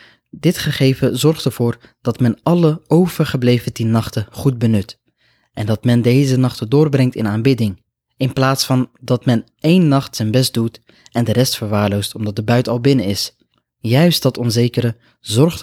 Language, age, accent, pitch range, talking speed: Dutch, 20-39, Dutch, 115-140 Hz, 170 wpm